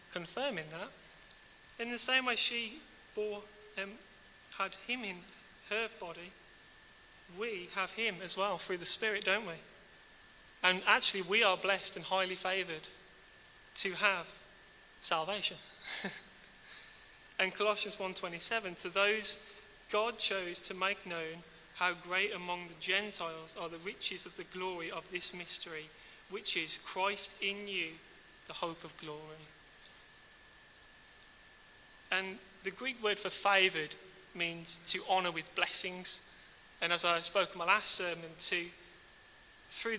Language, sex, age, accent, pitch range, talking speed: English, male, 30-49, British, 175-205 Hz, 130 wpm